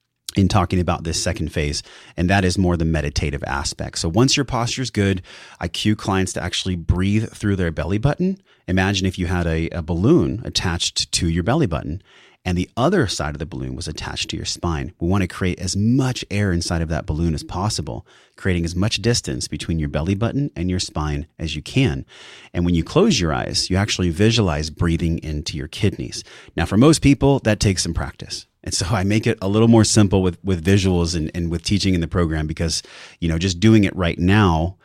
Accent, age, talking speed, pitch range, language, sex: American, 30-49, 220 wpm, 80-100 Hz, English, male